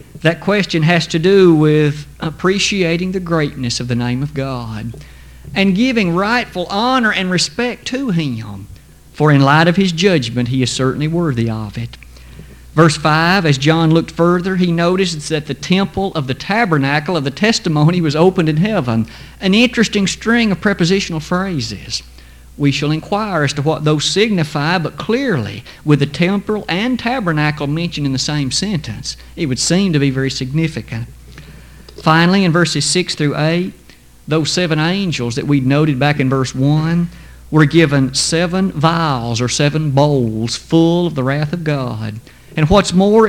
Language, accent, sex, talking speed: English, American, male, 165 wpm